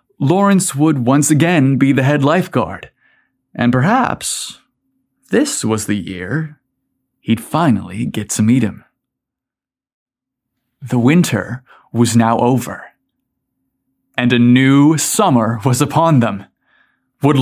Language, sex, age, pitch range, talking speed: English, male, 30-49, 120-175 Hz, 115 wpm